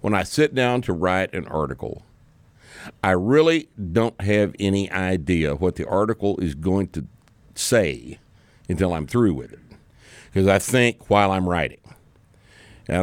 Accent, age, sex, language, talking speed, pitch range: American, 60-79, male, English, 150 wpm, 80-105 Hz